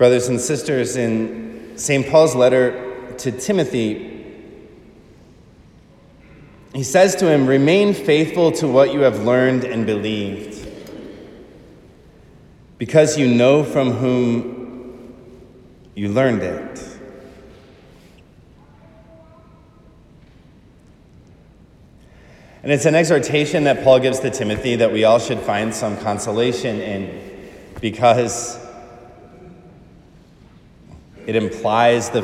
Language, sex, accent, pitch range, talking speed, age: English, male, American, 105-130 Hz, 95 wpm, 30-49